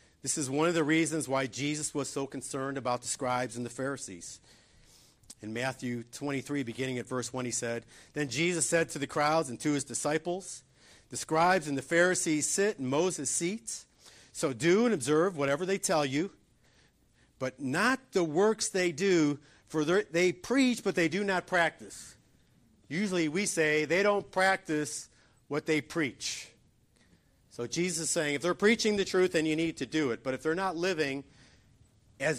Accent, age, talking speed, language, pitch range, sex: American, 50-69, 180 wpm, English, 125-170 Hz, male